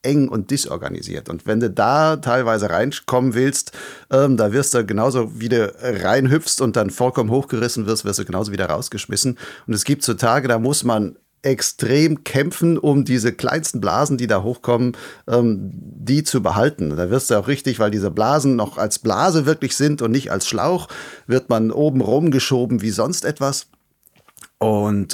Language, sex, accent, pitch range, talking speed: German, male, German, 115-145 Hz, 175 wpm